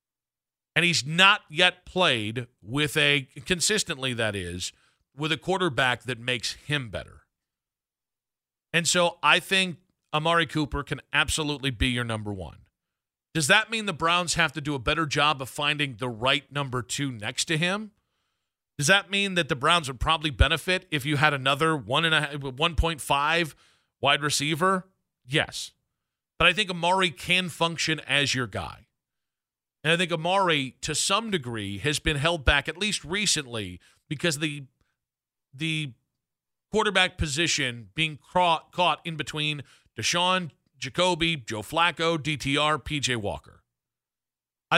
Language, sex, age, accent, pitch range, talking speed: English, male, 40-59, American, 130-170 Hz, 145 wpm